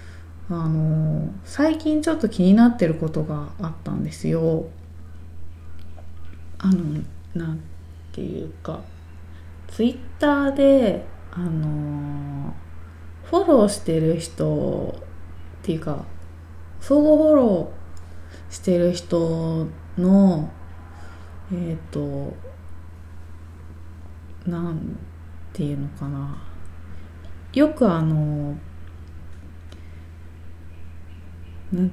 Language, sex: Japanese, female